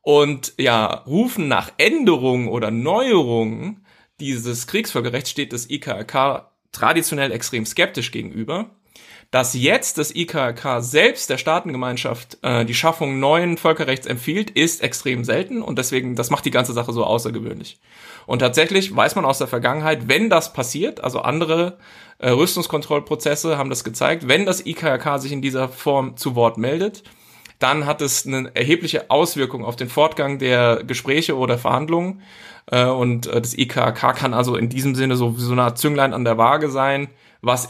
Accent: German